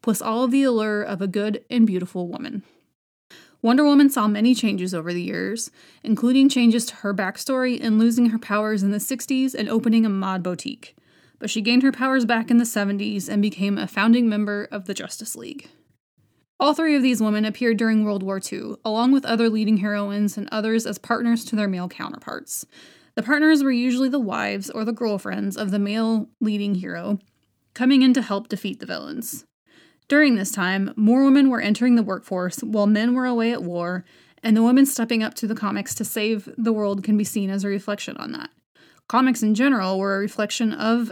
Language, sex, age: English, female, 20-39